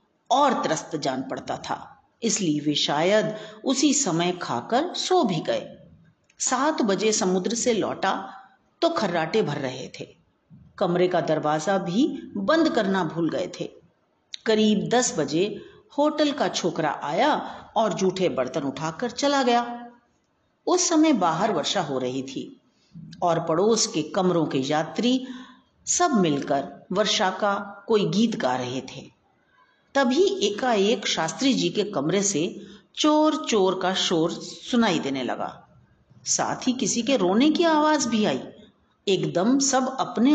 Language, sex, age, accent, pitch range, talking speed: Hindi, female, 50-69, native, 170-275 Hz, 140 wpm